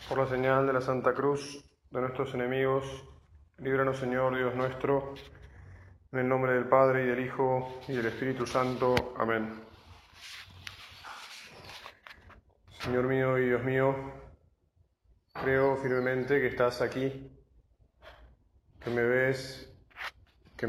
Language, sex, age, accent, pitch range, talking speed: Spanish, male, 20-39, Argentinian, 95-130 Hz, 120 wpm